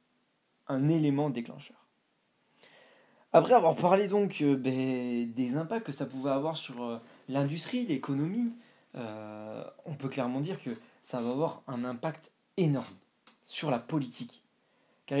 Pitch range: 130-185 Hz